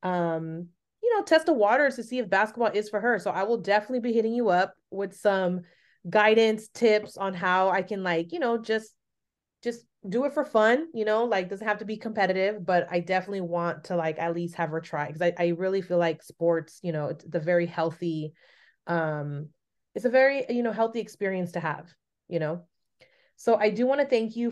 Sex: female